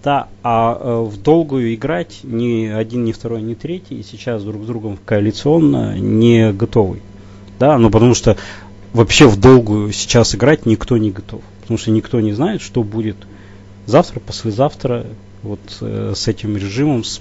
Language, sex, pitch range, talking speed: Russian, male, 100-115 Hz, 160 wpm